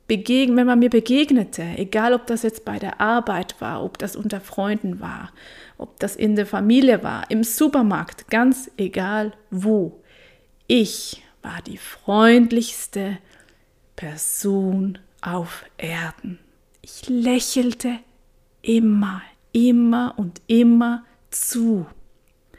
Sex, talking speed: female, 110 wpm